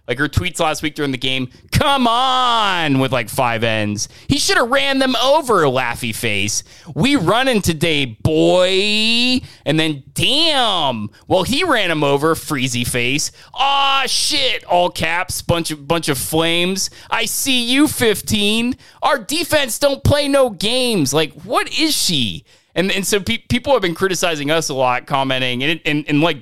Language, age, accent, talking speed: English, 30-49, American, 175 wpm